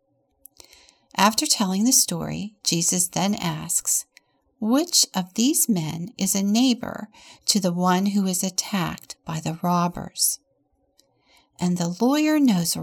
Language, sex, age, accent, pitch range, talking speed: English, female, 50-69, American, 175-240 Hz, 125 wpm